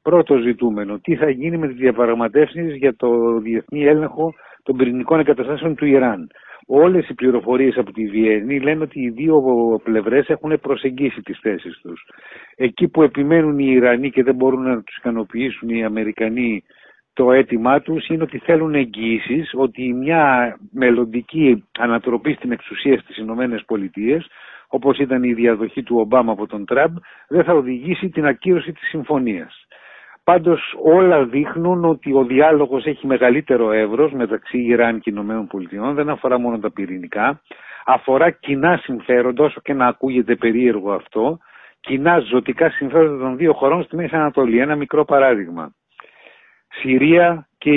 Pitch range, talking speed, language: 120-155 Hz, 150 wpm, Greek